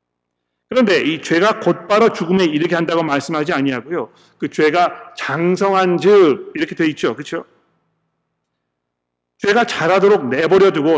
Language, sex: Korean, male